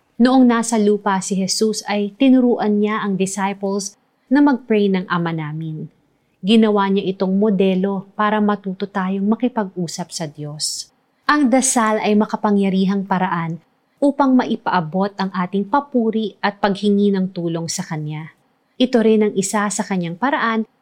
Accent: native